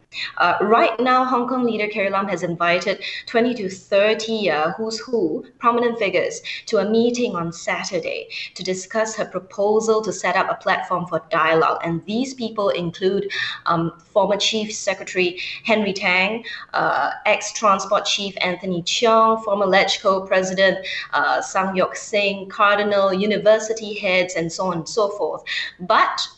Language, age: English, 20-39